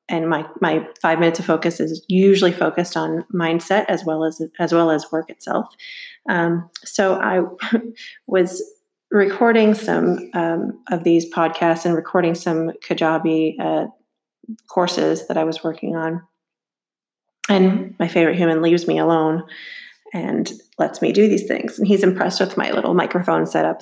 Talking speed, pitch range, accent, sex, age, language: 155 wpm, 160-195 Hz, American, female, 30-49, English